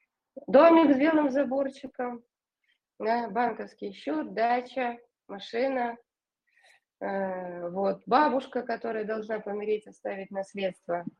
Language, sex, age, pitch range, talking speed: Russian, female, 20-39, 210-285 Hz, 90 wpm